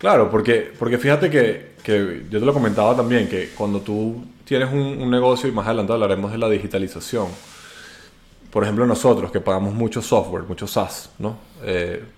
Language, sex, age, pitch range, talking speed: Spanish, male, 20-39, 105-140 Hz, 175 wpm